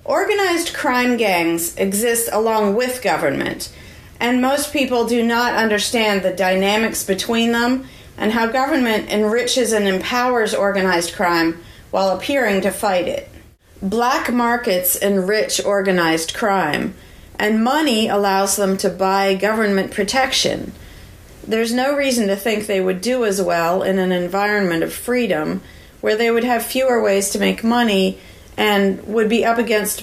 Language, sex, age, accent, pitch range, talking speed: English, female, 40-59, American, 190-240 Hz, 145 wpm